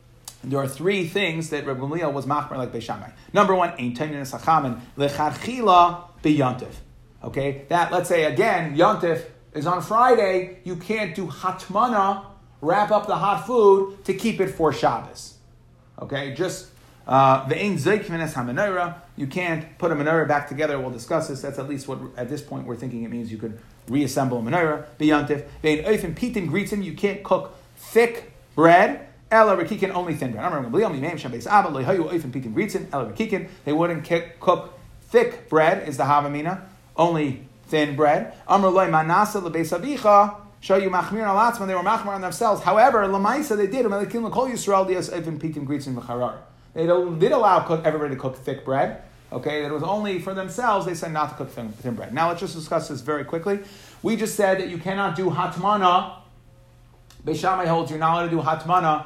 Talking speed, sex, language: 150 wpm, male, English